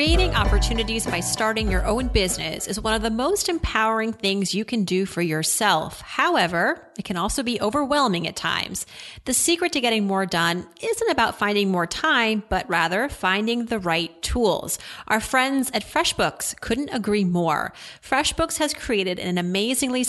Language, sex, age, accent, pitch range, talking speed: English, female, 30-49, American, 195-255 Hz, 165 wpm